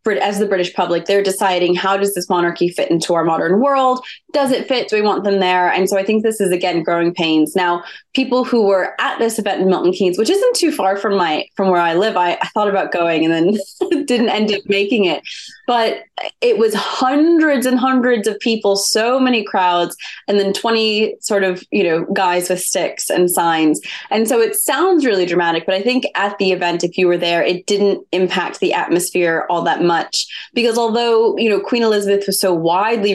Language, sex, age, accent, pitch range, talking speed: English, female, 20-39, American, 180-230 Hz, 220 wpm